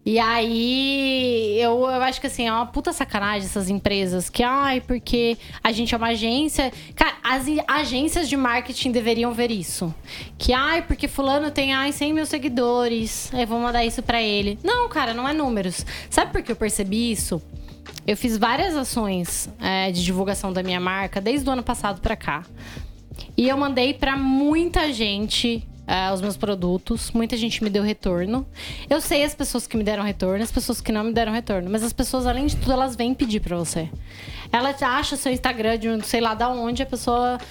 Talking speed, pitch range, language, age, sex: 195 wpm, 205-265 Hz, Portuguese, 10-29, female